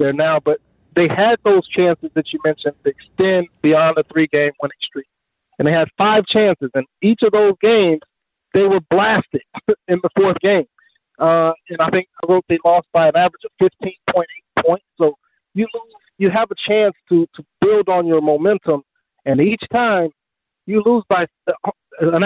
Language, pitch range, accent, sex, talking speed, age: English, 145-195 Hz, American, male, 180 wpm, 40-59